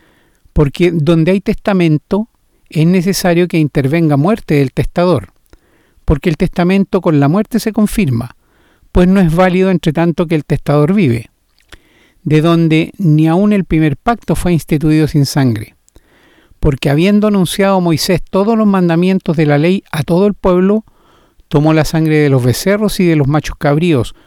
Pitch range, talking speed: 150-190 Hz, 160 wpm